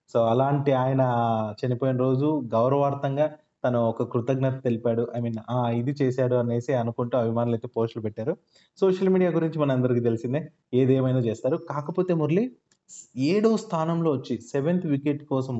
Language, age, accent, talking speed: Telugu, 20-39, native, 140 wpm